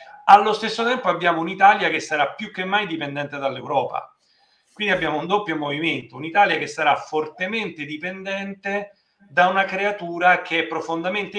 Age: 40-59